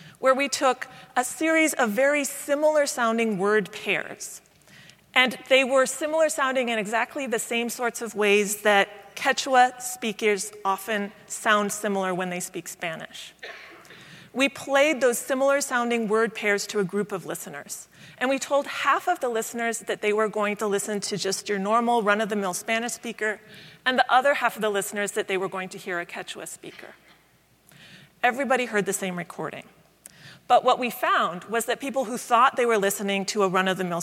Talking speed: 185 wpm